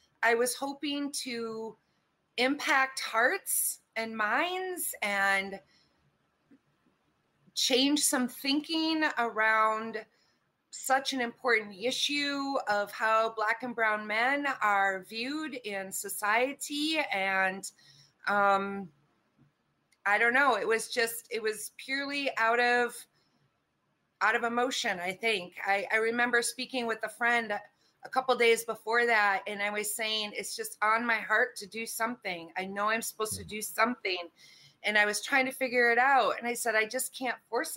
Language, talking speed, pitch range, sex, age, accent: English, 145 wpm, 205-250 Hz, female, 30-49, American